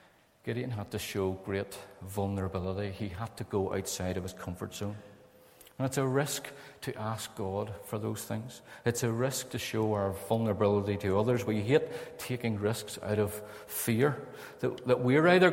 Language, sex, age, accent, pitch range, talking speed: English, male, 50-69, British, 95-115 Hz, 175 wpm